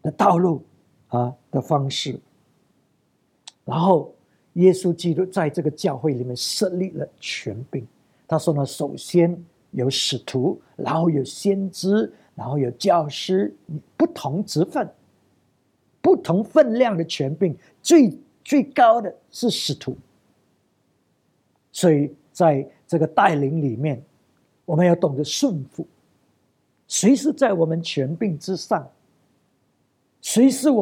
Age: 50-69